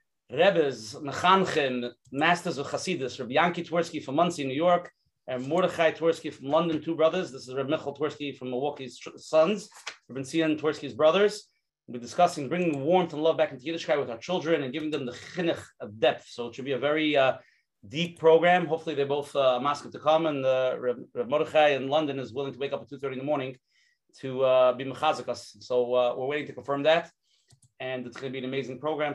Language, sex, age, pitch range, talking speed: English, male, 30-49, 130-155 Hz, 215 wpm